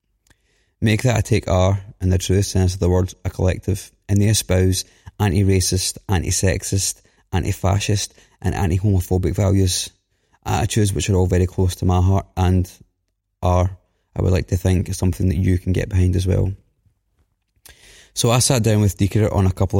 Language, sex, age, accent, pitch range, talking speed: English, male, 20-39, British, 95-105 Hz, 170 wpm